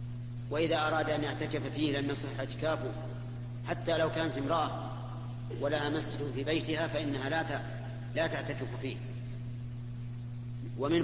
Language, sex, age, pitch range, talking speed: Arabic, male, 40-59, 120-145 Hz, 125 wpm